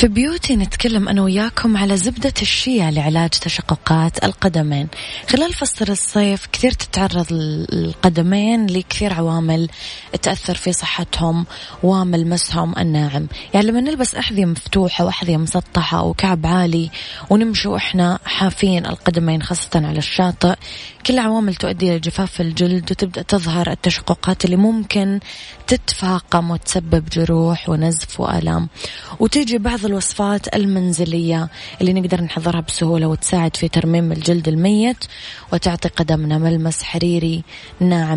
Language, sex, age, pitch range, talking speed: Arabic, female, 20-39, 165-195 Hz, 115 wpm